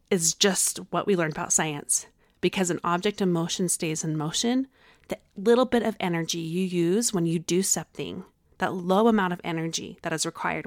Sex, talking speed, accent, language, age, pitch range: female, 190 wpm, American, English, 30-49, 165-225 Hz